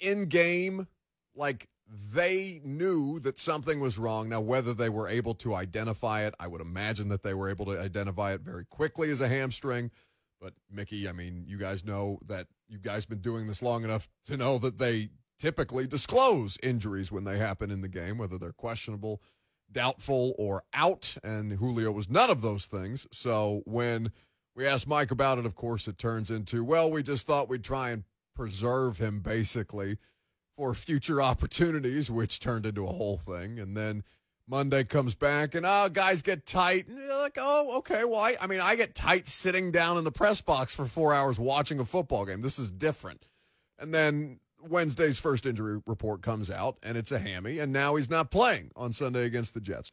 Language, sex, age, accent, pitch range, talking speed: English, male, 30-49, American, 105-145 Hz, 200 wpm